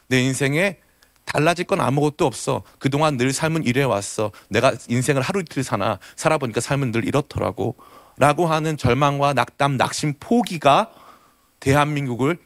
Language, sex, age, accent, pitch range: Korean, male, 30-49, native, 125-190 Hz